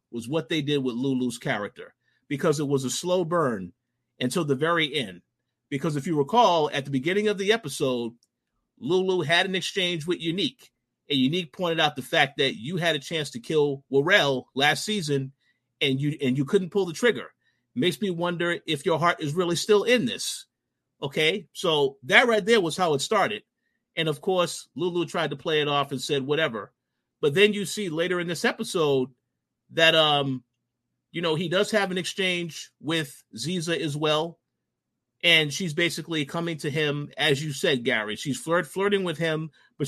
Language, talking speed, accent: English, 190 wpm, American